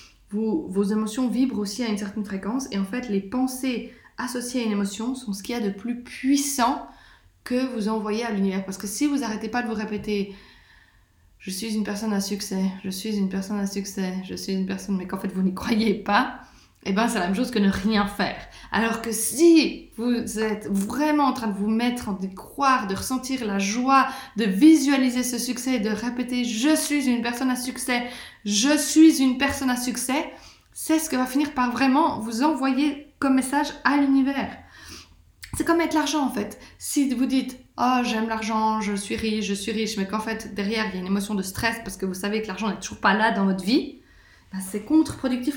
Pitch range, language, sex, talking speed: 200-260 Hz, French, female, 225 wpm